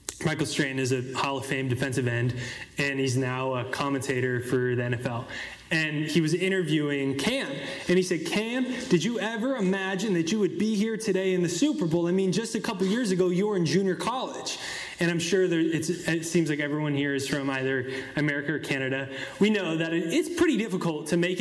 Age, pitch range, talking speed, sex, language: 20-39, 150-200 Hz, 215 wpm, male, English